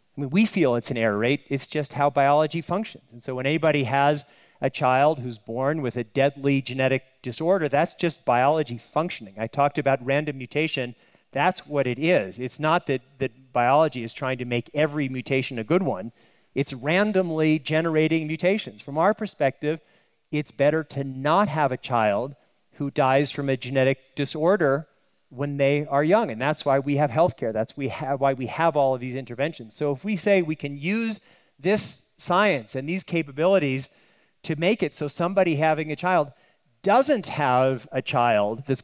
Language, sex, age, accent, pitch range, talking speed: English, male, 40-59, American, 130-160 Hz, 180 wpm